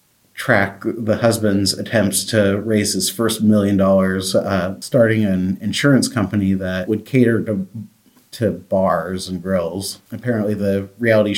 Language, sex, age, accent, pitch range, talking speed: English, male, 30-49, American, 95-115 Hz, 135 wpm